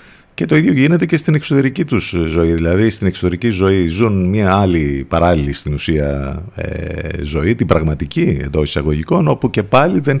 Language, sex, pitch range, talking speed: Greek, male, 80-110 Hz, 165 wpm